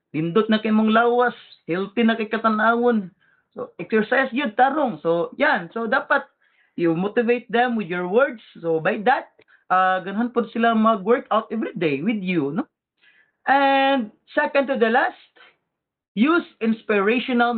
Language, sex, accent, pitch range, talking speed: English, male, Filipino, 170-240 Hz, 145 wpm